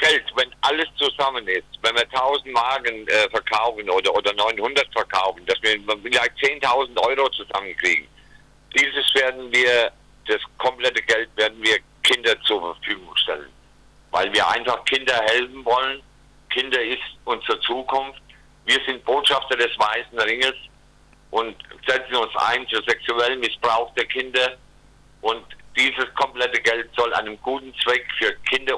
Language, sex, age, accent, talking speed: German, male, 50-69, German, 140 wpm